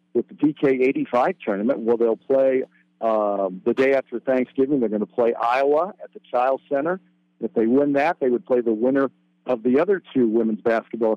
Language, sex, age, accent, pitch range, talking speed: English, male, 50-69, American, 110-140 Hz, 200 wpm